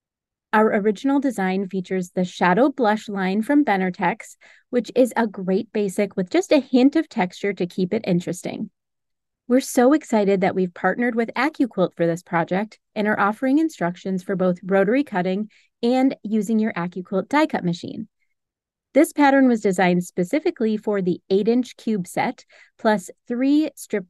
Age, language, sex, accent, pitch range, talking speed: 30-49, English, female, American, 190-255 Hz, 160 wpm